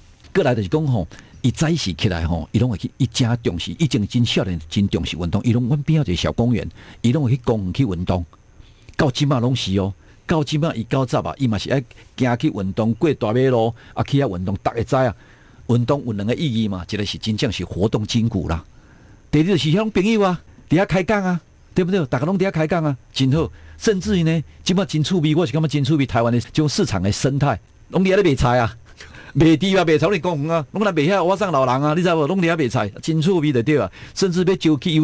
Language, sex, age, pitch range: Chinese, male, 50-69, 105-160 Hz